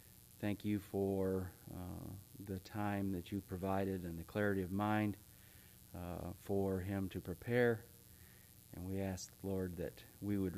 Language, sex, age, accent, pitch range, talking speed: English, male, 40-59, American, 95-105 Hz, 145 wpm